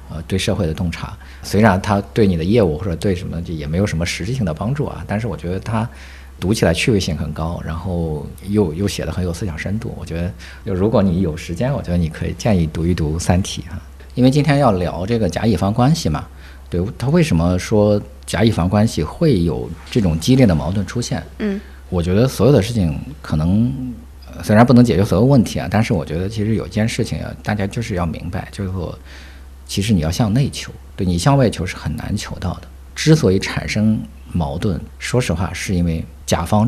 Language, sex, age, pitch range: Chinese, male, 50-69, 80-105 Hz